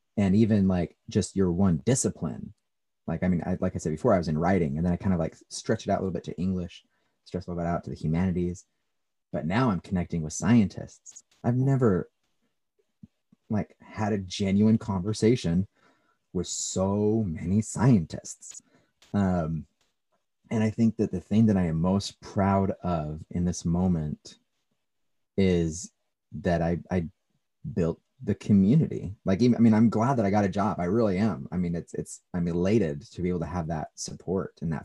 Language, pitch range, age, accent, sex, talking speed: English, 85-100 Hz, 30-49, American, male, 185 wpm